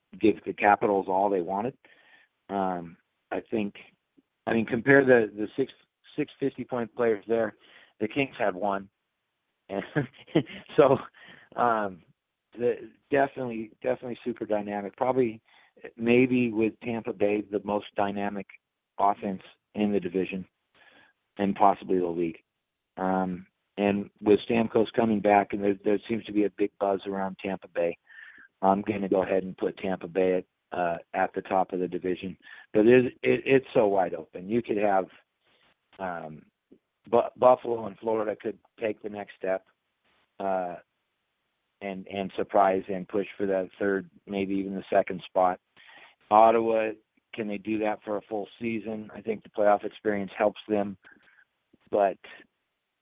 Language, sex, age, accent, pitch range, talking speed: English, male, 40-59, American, 95-110 Hz, 150 wpm